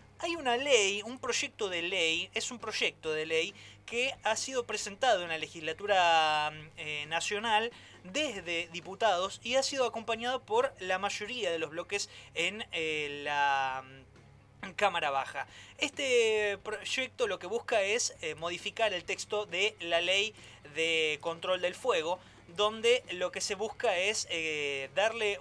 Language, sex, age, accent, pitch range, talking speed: Spanish, male, 20-39, Argentinian, 165-220 Hz, 150 wpm